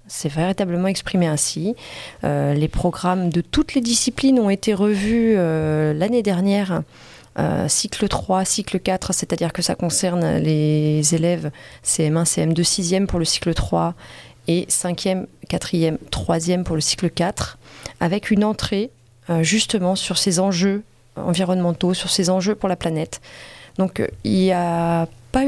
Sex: female